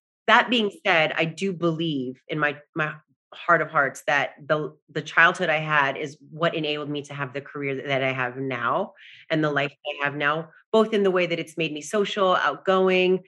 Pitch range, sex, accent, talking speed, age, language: 160-190 Hz, female, American, 210 wpm, 30-49, English